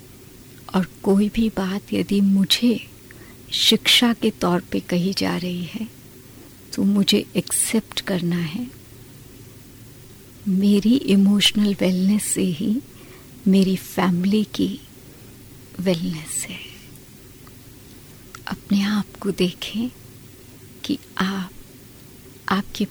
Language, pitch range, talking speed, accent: Hindi, 125-195 Hz, 95 wpm, native